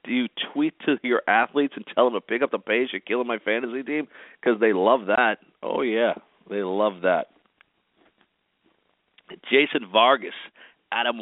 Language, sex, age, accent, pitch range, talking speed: English, male, 50-69, American, 100-125 Hz, 165 wpm